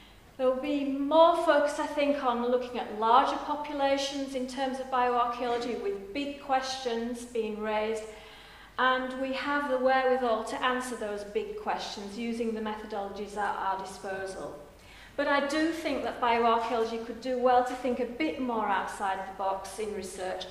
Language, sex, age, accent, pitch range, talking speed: English, female, 40-59, British, 215-265 Hz, 165 wpm